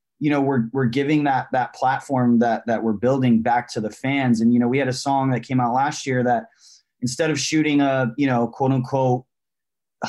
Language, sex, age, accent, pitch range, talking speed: English, male, 20-39, American, 120-135 Hz, 210 wpm